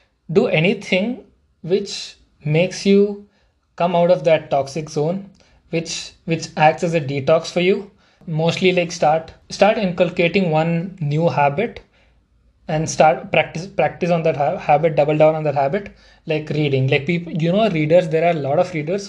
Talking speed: 165 wpm